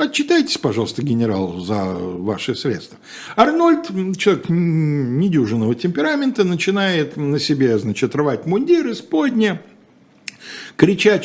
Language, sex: Russian, male